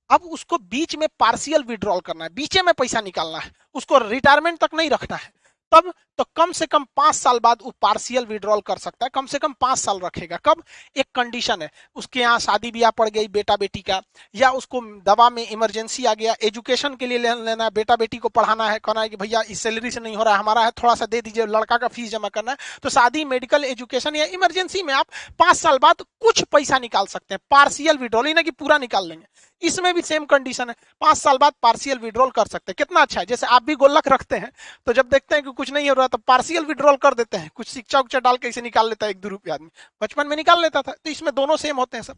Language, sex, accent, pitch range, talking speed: Hindi, male, native, 225-300 Hz, 220 wpm